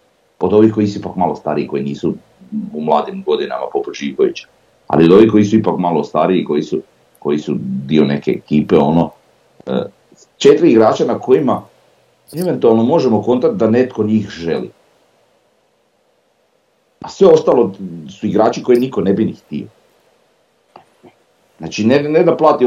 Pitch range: 75-110 Hz